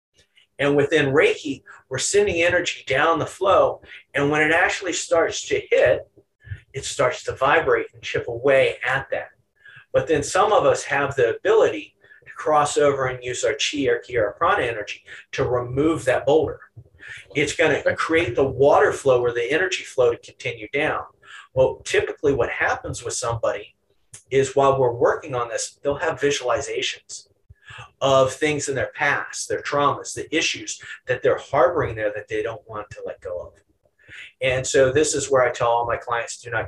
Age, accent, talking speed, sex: 40-59, American, 180 wpm, male